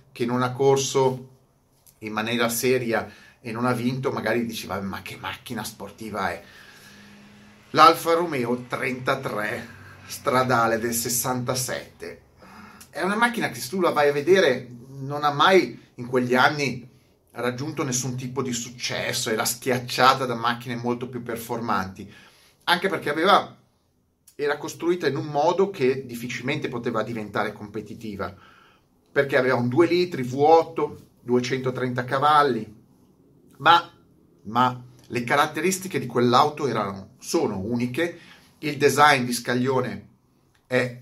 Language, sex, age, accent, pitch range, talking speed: Italian, male, 30-49, native, 120-140 Hz, 125 wpm